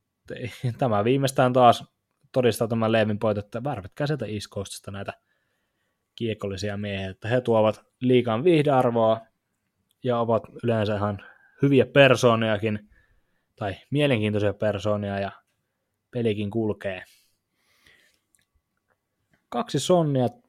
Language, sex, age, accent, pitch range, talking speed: Finnish, male, 20-39, native, 105-125 Hz, 90 wpm